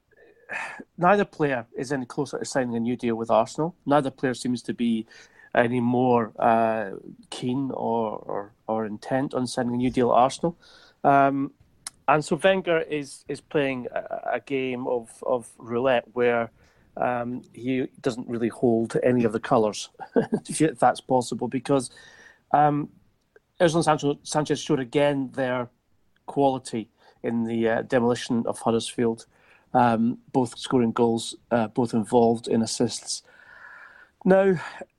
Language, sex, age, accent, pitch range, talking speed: English, male, 40-59, British, 115-145 Hz, 140 wpm